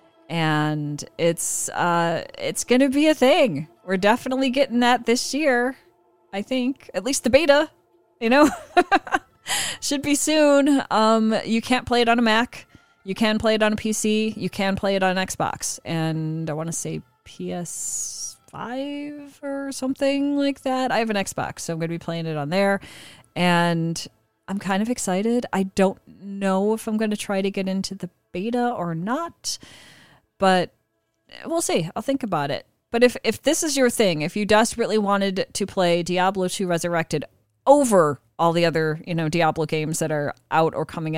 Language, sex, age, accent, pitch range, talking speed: English, female, 30-49, American, 160-230 Hz, 185 wpm